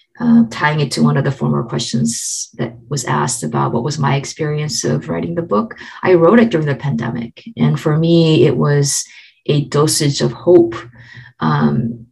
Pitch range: 115-160 Hz